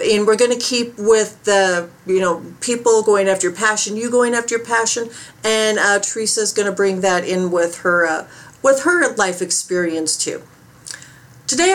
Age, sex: 40-59, female